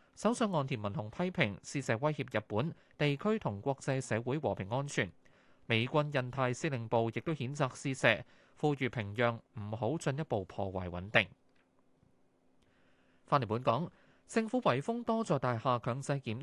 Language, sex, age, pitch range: Chinese, male, 20-39, 115-160 Hz